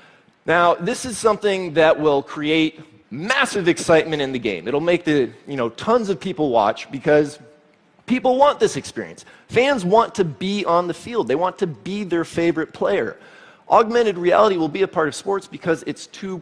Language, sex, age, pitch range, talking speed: English, male, 30-49, 125-190 Hz, 185 wpm